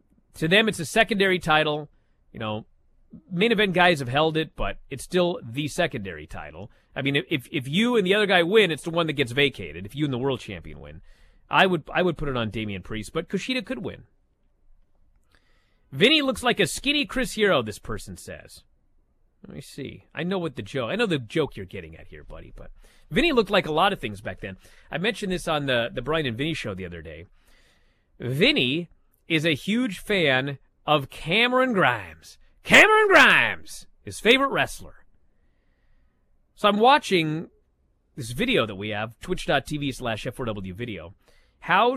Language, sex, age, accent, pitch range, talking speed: English, male, 30-49, American, 110-180 Hz, 190 wpm